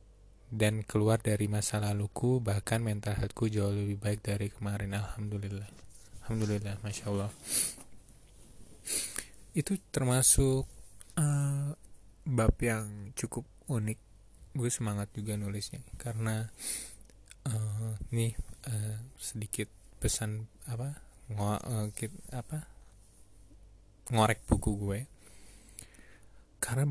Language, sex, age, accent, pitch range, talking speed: Indonesian, male, 20-39, native, 100-115 Hz, 90 wpm